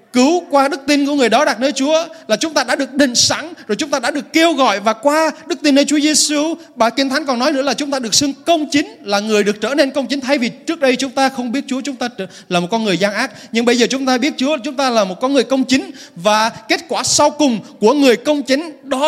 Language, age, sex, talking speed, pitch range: Vietnamese, 20-39, male, 295 wpm, 220-285 Hz